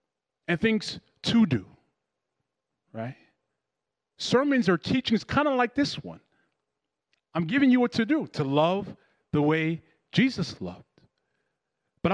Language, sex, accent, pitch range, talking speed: English, male, American, 170-270 Hz, 130 wpm